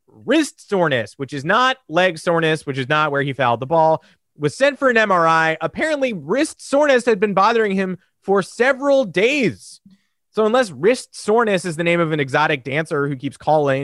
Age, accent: 30-49, American